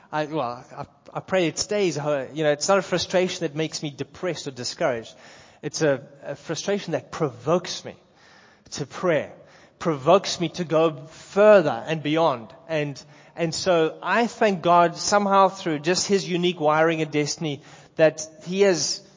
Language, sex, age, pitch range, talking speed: English, male, 20-39, 160-210 Hz, 165 wpm